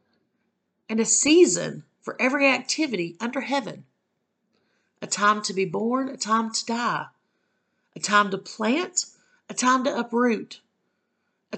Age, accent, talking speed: 50-69, American, 135 wpm